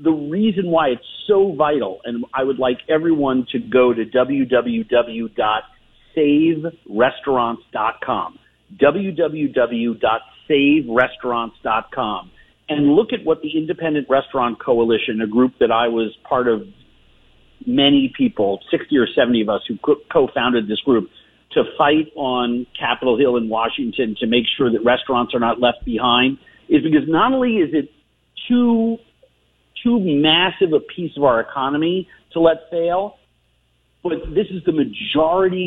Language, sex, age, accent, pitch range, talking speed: English, male, 50-69, American, 120-170 Hz, 135 wpm